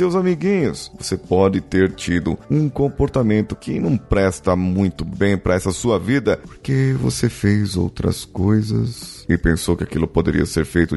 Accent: Brazilian